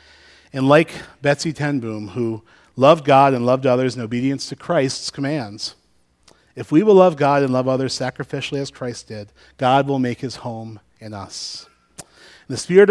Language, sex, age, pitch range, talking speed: English, male, 40-59, 120-155 Hz, 170 wpm